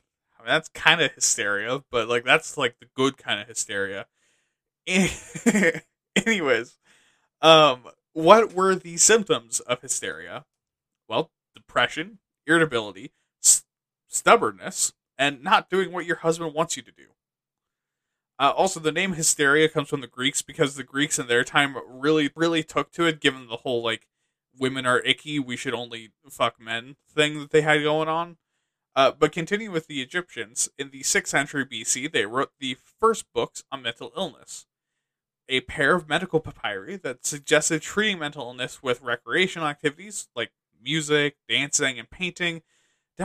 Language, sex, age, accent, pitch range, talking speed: English, male, 20-39, American, 130-165 Hz, 160 wpm